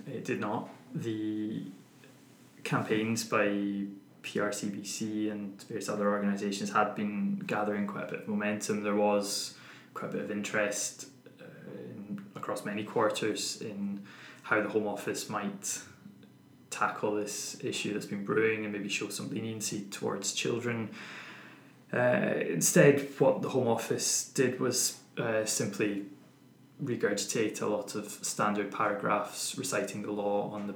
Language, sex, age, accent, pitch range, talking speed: English, male, 20-39, British, 100-105 Hz, 135 wpm